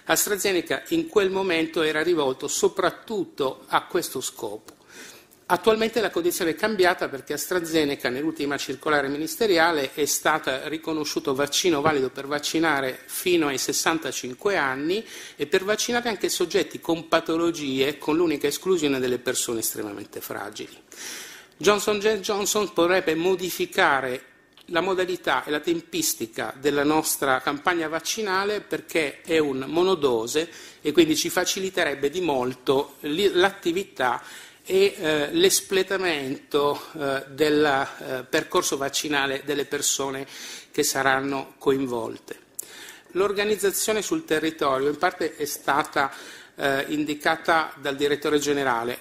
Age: 50-69